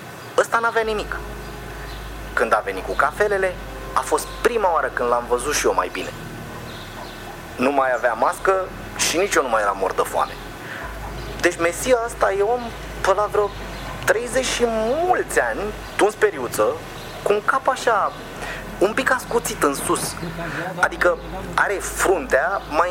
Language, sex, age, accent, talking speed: Romanian, male, 30-49, native, 155 wpm